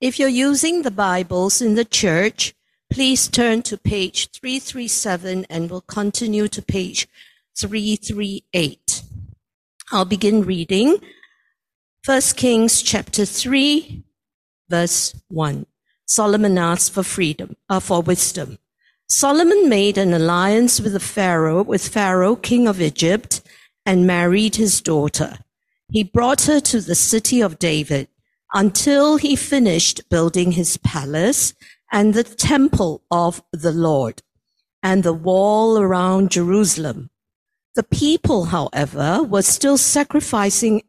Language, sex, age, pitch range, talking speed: English, female, 50-69, 175-235 Hz, 120 wpm